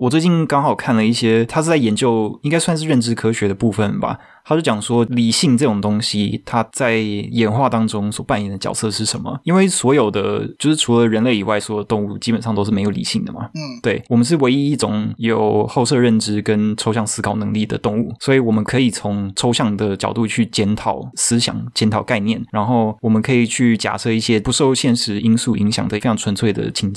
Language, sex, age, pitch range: Chinese, male, 20-39, 105-125 Hz